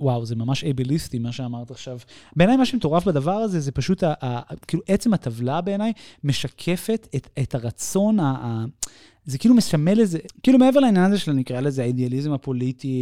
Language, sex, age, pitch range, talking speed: Hebrew, male, 30-49, 125-170 Hz, 180 wpm